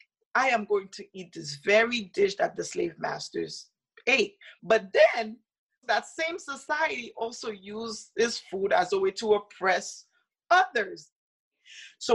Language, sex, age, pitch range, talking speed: English, female, 30-49, 210-310 Hz, 145 wpm